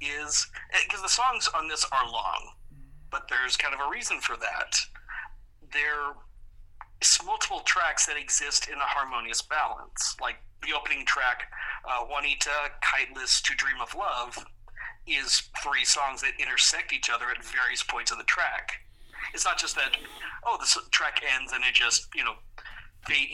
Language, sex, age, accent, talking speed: English, male, 40-59, American, 160 wpm